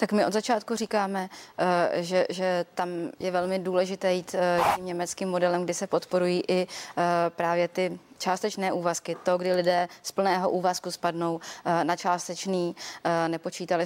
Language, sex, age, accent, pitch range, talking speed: Czech, female, 20-39, native, 170-185 Hz, 145 wpm